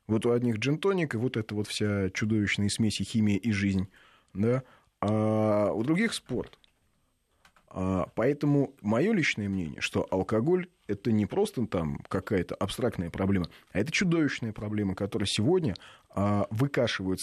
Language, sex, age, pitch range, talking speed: Russian, male, 20-39, 105-140 Hz, 130 wpm